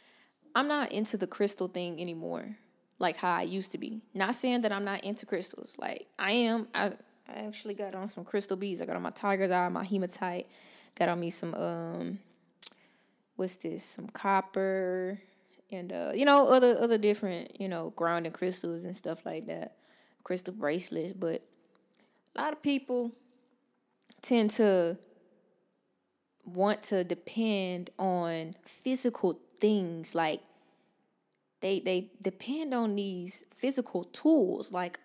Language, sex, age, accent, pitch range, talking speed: English, female, 20-39, American, 180-225 Hz, 150 wpm